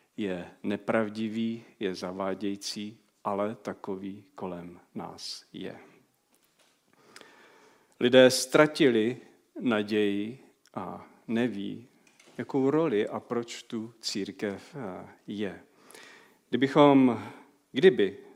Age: 40-59